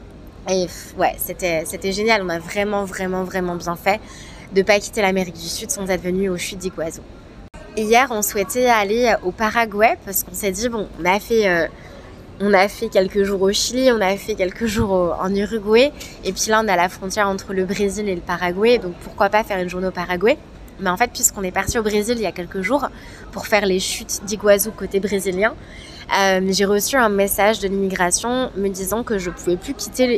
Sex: female